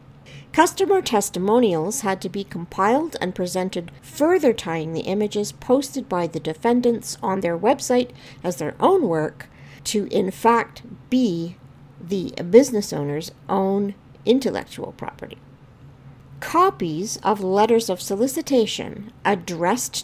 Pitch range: 165-240 Hz